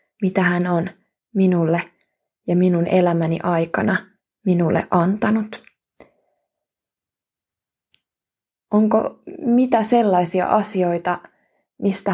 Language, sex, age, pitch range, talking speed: Finnish, female, 20-39, 175-195 Hz, 75 wpm